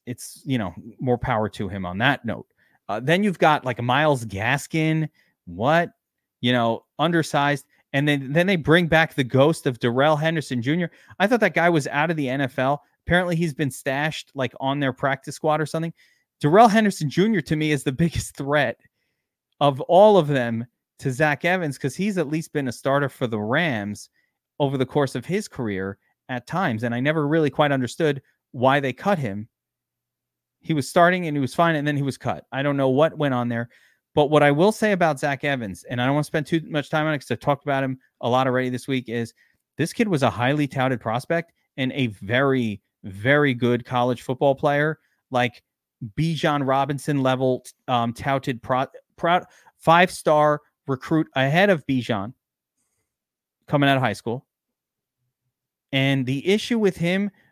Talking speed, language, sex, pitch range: 195 wpm, English, male, 125-160 Hz